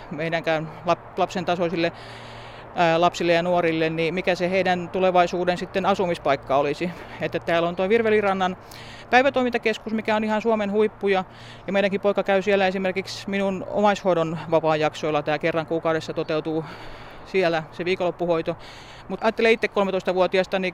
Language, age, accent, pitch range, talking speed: Finnish, 30-49, native, 160-190 Hz, 135 wpm